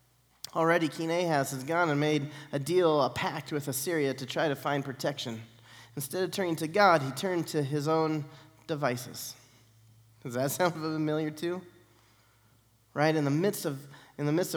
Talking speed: 175 wpm